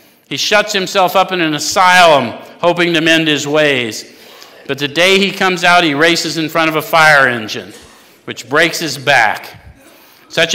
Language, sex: English, male